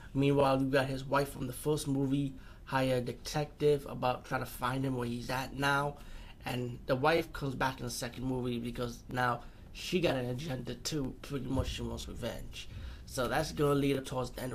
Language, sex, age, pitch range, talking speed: English, male, 30-49, 120-145 Hz, 205 wpm